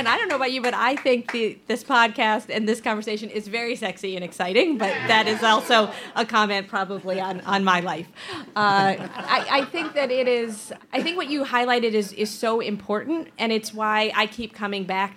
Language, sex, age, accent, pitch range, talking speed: English, female, 30-49, American, 190-230 Hz, 215 wpm